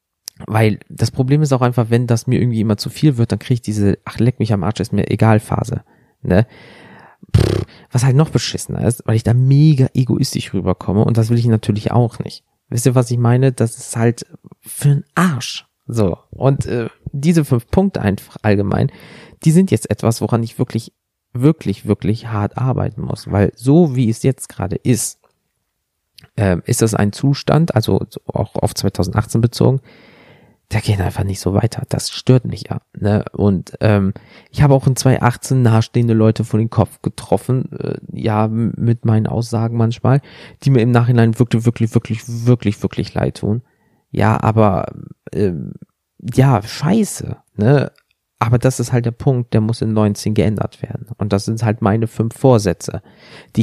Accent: German